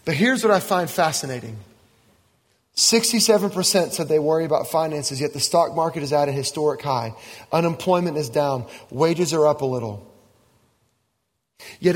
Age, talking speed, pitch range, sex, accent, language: 30-49, 150 wpm, 120-185 Hz, male, American, English